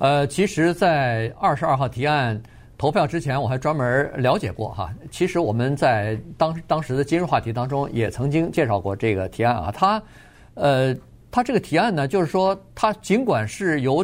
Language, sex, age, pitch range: Chinese, male, 50-69, 115-175 Hz